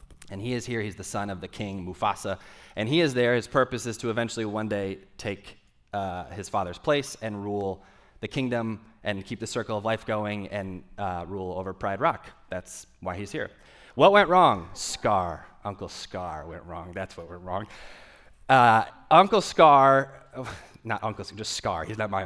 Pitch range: 100-135 Hz